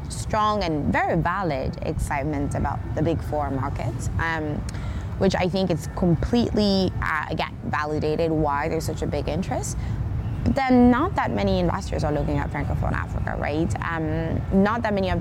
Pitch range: 115-180 Hz